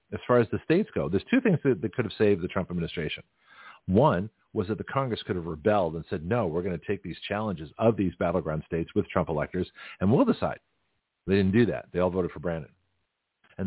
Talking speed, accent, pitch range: 235 wpm, American, 95-125 Hz